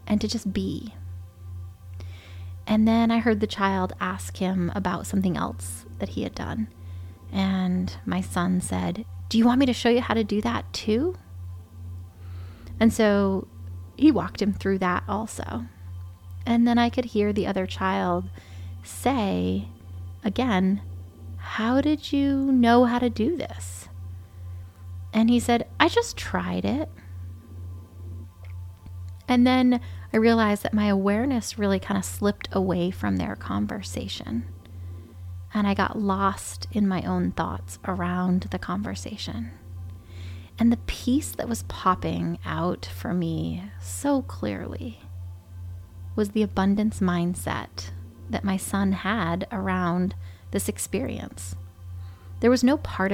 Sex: female